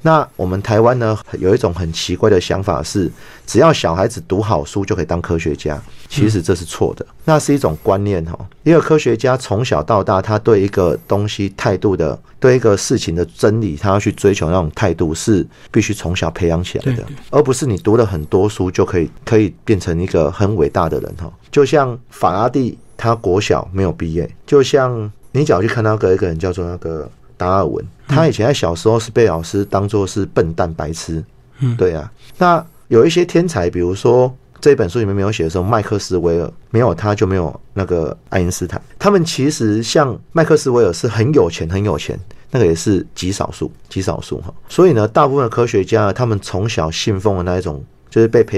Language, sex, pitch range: Chinese, male, 90-120 Hz